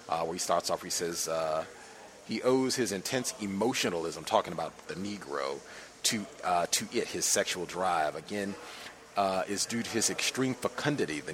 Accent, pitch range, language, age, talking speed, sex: American, 100-130 Hz, English, 30-49, 175 wpm, male